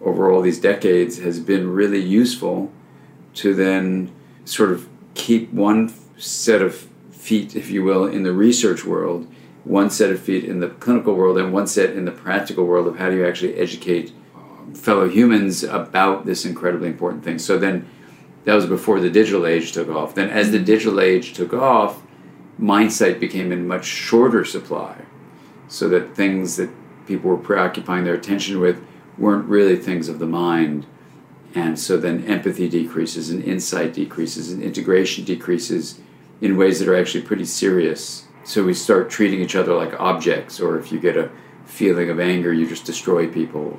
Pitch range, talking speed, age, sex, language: 85-100 Hz, 175 wpm, 50-69, male, English